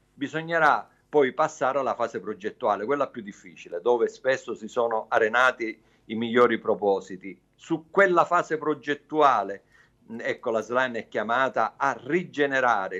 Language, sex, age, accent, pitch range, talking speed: Italian, male, 50-69, native, 125-170 Hz, 130 wpm